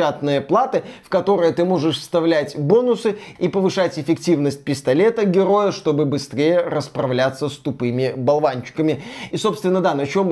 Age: 20-39